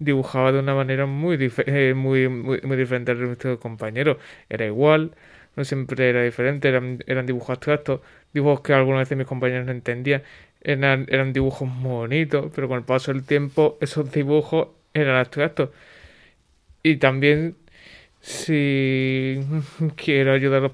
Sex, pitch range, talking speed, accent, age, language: male, 130-145 Hz, 155 wpm, Spanish, 20-39, Spanish